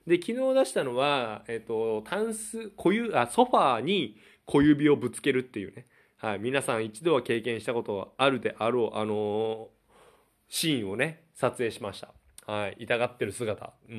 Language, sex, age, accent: Japanese, male, 20-39, native